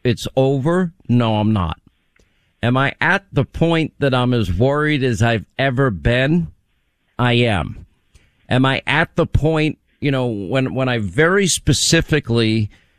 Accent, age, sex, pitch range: American, 50-69, male, 110-145 Hz